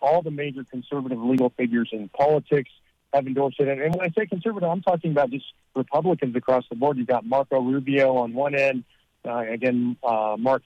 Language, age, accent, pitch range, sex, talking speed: English, 50-69, American, 120-140 Hz, male, 195 wpm